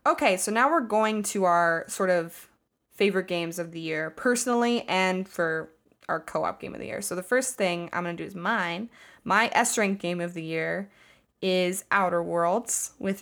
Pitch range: 175-220 Hz